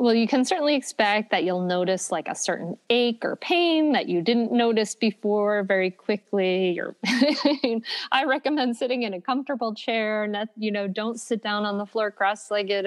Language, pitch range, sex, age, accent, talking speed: English, 195-235 Hz, female, 30-49, American, 180 wpm